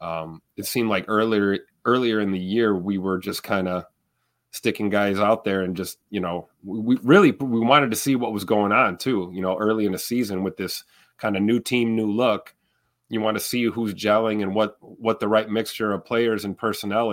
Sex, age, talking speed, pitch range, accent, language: male, 30-49, 225 wpm, 95-115 Hz, American, English